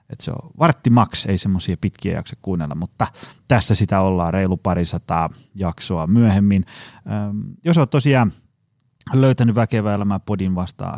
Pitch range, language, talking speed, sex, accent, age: 95-130 Hz, Finnish, 135 wpm, male, native, 30-49